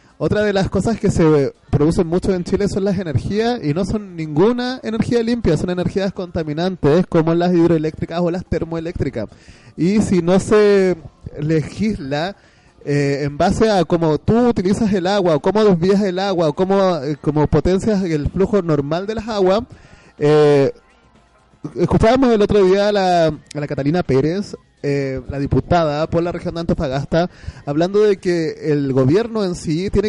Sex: male